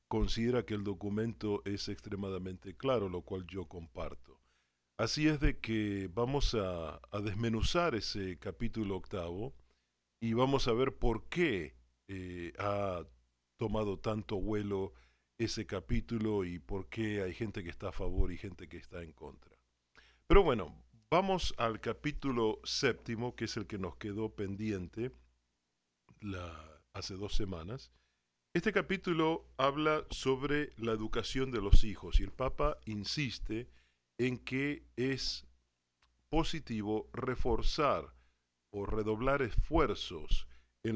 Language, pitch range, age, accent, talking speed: Spanish, 85-115 Hz, 50-69, Argentinian, 130 wpm